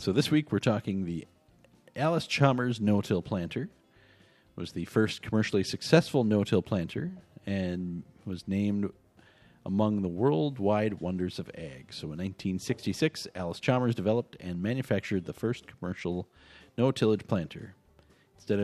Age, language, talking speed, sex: 40-59, English, 130 wpm, male